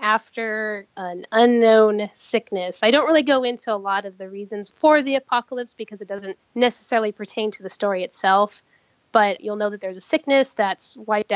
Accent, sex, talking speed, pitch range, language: American, female, 185 wpm, 195-225 Hz, English